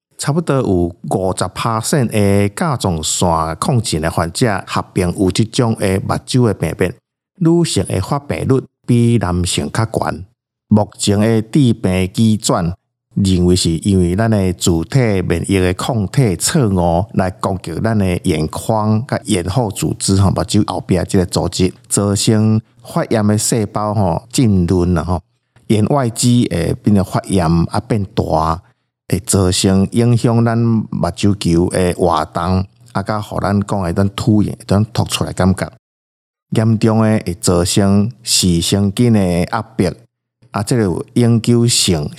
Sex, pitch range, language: male, 90-120 Hz, Chinese